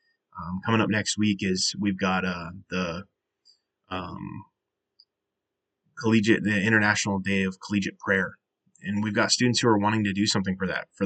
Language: English